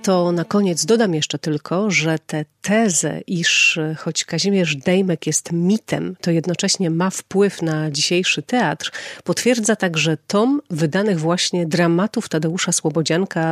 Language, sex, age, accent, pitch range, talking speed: Polish, female, 40-59, native, 160-185 Hz, 140 wpm